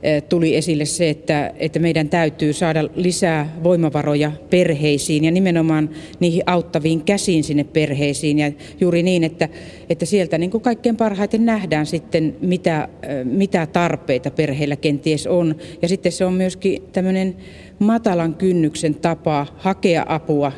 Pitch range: 155-180 Hz